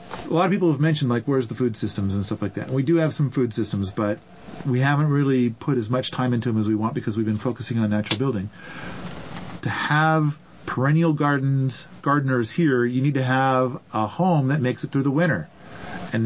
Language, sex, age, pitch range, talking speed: English, male, 40-59, 120-165 Hz, 225 wpm